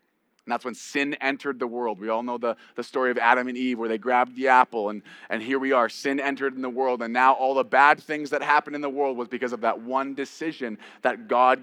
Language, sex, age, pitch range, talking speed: English, male, 30-49, 125-165 Hz, 265 wpm